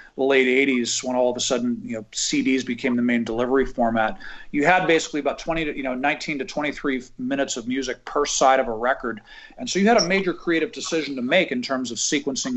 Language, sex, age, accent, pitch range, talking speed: English, male, 40-59, American, 125-145 Hz, 230 wpm